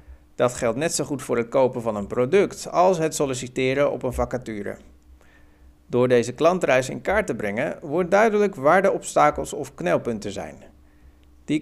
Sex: male